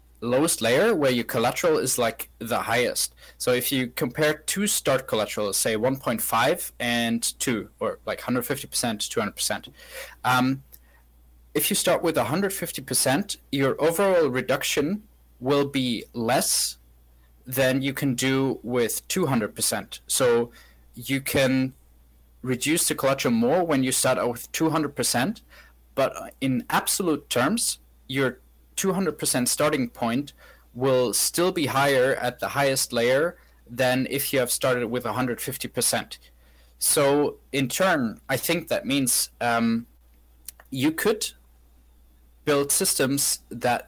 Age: 20-39